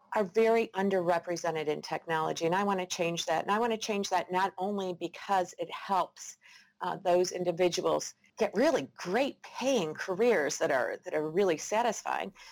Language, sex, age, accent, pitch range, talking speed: English, female, 50-69, American, 160-205 Hz, 170 wpm